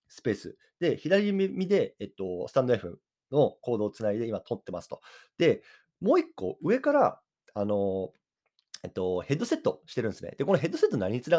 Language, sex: Japanese, male